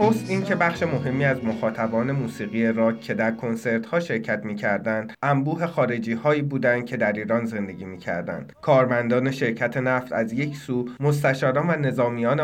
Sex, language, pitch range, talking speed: male, Persian, 115-145 Hz, 155 wpm